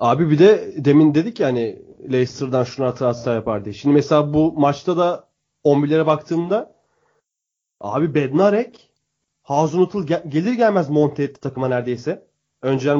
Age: 30-49